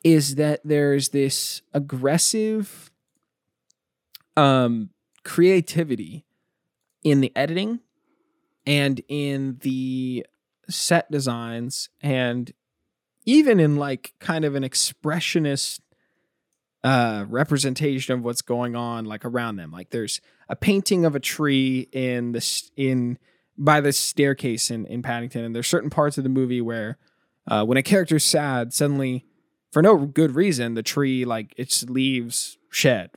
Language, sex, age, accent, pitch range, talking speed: English, male, 20-39, American, 125-170 Hz, 130 wpm